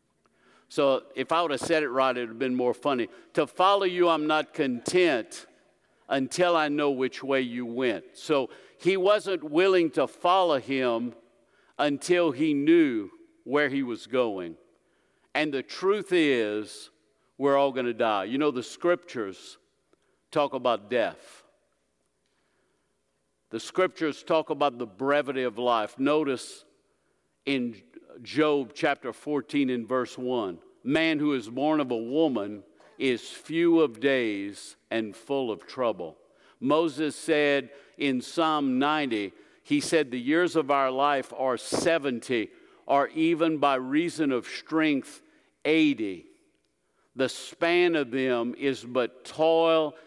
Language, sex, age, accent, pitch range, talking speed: English, male, 50-69, American, 125-165 Hz, 140 wpm